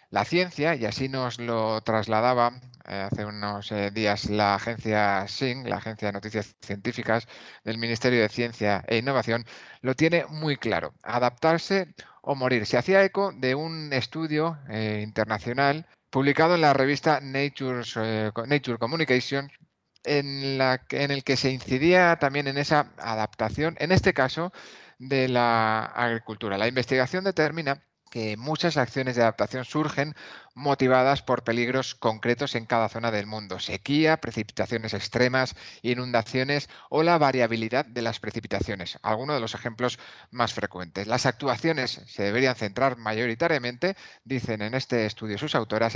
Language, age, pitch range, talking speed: Spanish, 30-49, 110-145 Hz, 145 wpm